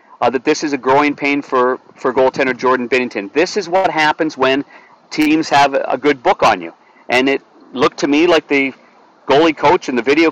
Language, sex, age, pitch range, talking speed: English, male, 40-59, 135-165 Hz, 210 wpm